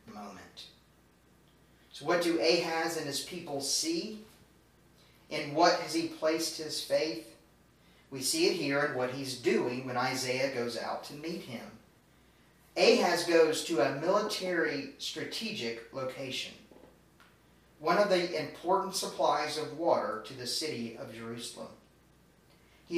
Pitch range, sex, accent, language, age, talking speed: 135-175 Hz, male, American, English, 40-59, 135 wpm